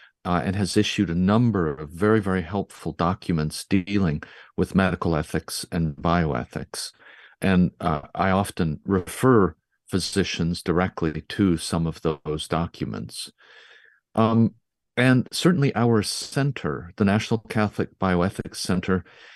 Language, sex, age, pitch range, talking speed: English, male, 50-69, 85-105 Hz, 120 wpm